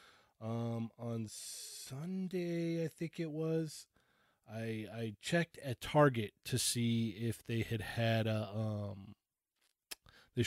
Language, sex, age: English, male, 20-39